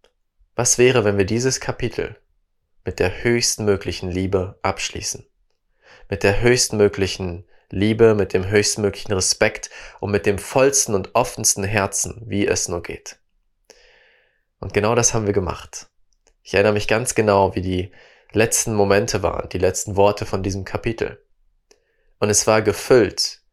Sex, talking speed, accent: male, 145 wpm, German